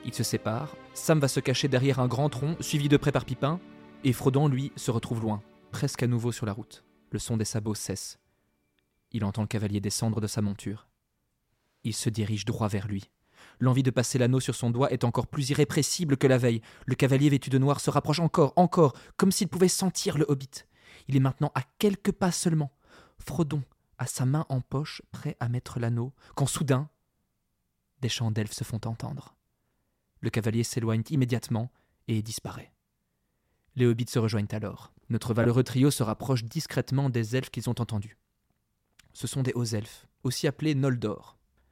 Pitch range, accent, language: 115-145 Hz, French, French